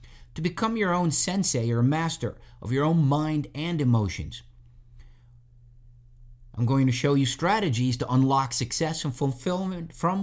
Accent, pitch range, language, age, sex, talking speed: American, 120-155 Hz, English, 50-69, male, 145 wpm